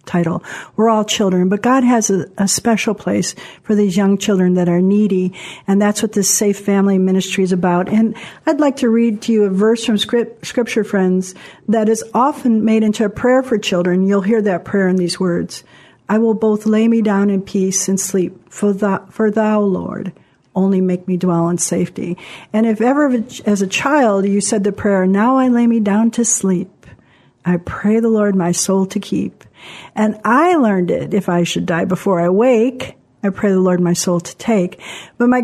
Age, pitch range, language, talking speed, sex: 50-69, 185-225 Hz, English, 210 wpm, female